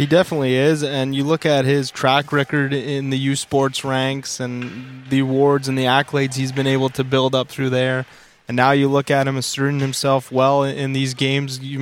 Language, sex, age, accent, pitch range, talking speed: English, male, 20-39, American, 130-140 Hz, 215 wpm